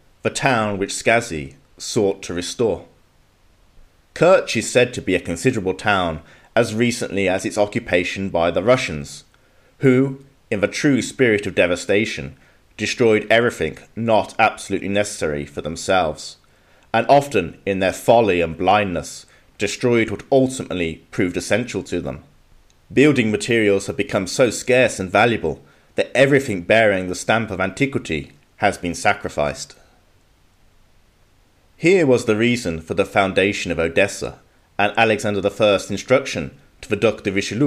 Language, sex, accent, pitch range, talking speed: English, male, British, 85-115 Hz, 140 wpm